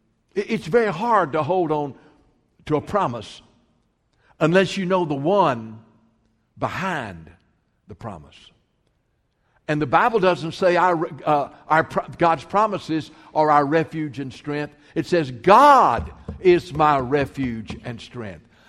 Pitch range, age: 130-165 Hz, 60-79